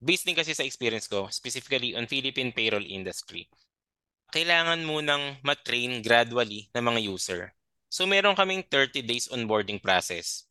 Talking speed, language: 145 wpm, Filipino